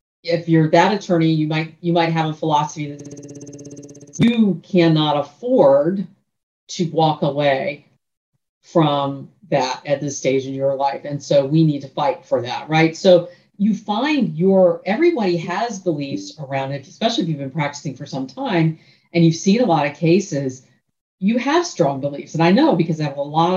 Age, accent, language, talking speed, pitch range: 50-69, American, English, 180 wpm, 140-180 Hz